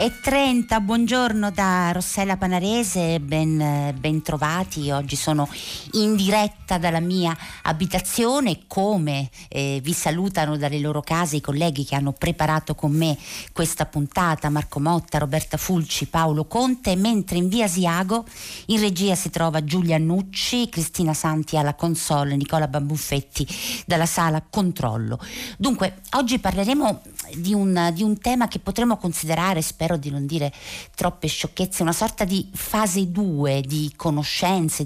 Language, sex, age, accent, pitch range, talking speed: Italian, female, 50-69, native, 145-190 Hz, 140 wpm